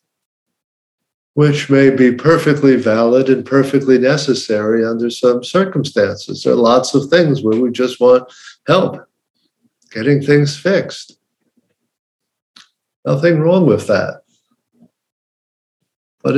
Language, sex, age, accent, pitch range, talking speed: English, male, 50-69, American, 115-145 Hz, 105 wpm